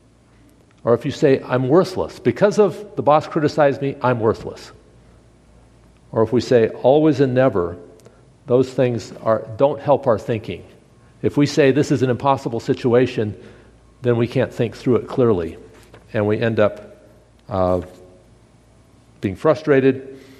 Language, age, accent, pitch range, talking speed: English, 50-69, American, 110-135 Hz, 145 wpm